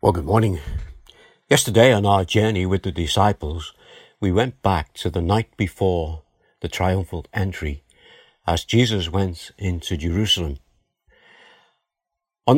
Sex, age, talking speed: male, 60-79, 125 wpm